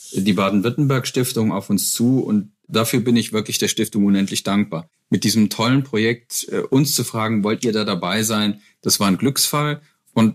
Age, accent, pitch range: 40-59, German, 100-125 Hz